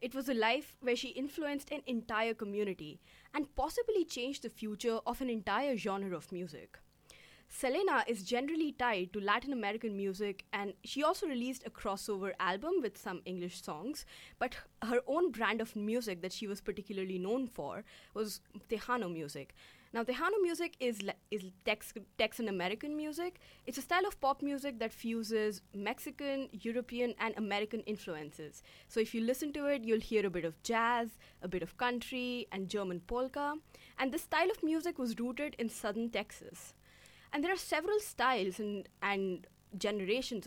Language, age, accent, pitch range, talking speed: English, 20-39, Indian, 200-265 Hz, 170 wpm